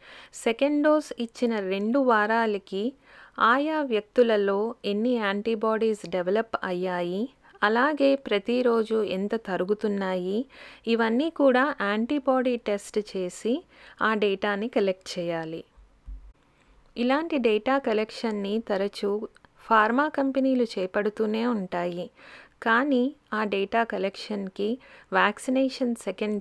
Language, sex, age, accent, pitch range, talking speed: Telugu, female, 30-49, native, 195-245 Hz, 85 wpm